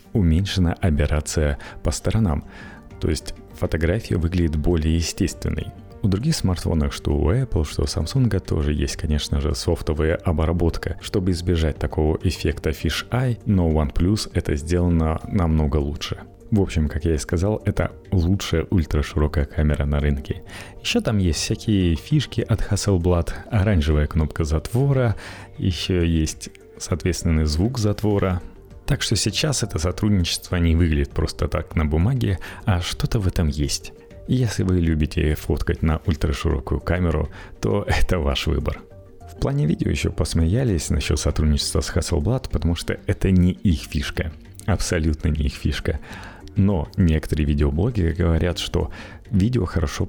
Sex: male